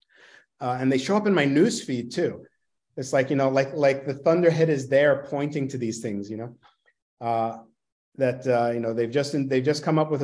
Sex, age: male, 40-59